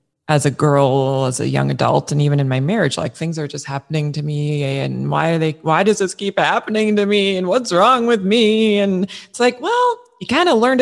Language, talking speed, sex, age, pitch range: English, 240 wpm, female, 30-49, 150-220 Hz